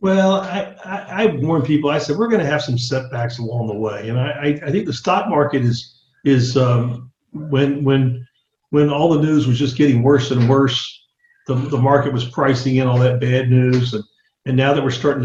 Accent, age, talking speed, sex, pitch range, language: American, 50-69, 215 wpm, male, 120-150 Hz, English